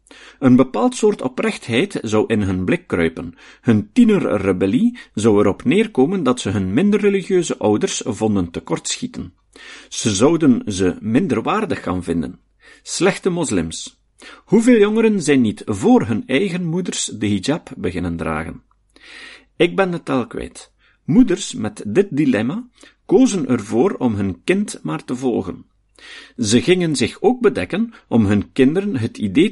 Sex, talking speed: male, 145 wpm